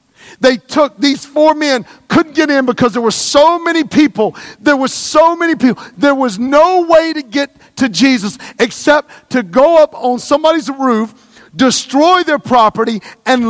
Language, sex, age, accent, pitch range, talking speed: English, male, 40-59, American, 215-290 Hz, 170 wpm